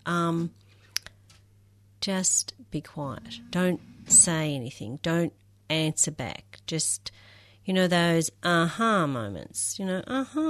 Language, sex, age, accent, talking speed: English, female, 40-59, Australian, 115 wpm